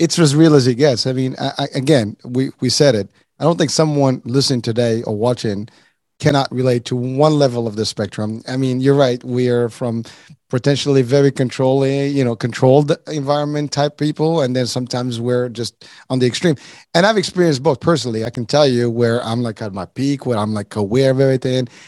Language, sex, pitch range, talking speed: English, male, 120-145 Hz, 210 wpm